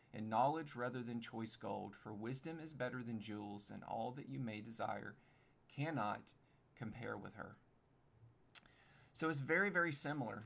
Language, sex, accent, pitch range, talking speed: English, male, American, 115-140 Hz, 155 wpm